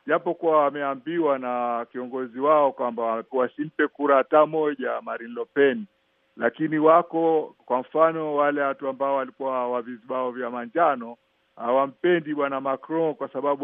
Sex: male